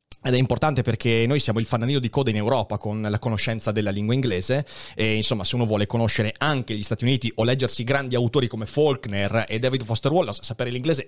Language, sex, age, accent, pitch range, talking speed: Italian, male, 30-49, native, 120-190 Hz, 215 wpm